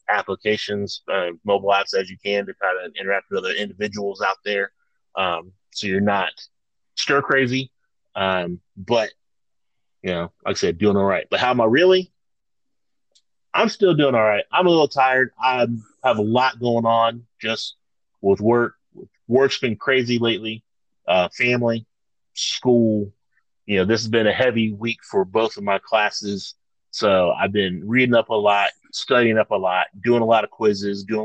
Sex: male